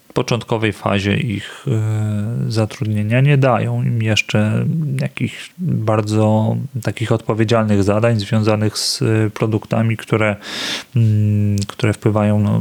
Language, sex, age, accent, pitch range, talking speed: Polish, male, 30-49, native, 105-125 Hz, 90 wpm